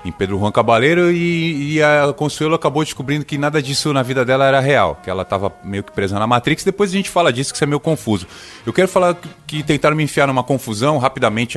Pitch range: 110-160 Hz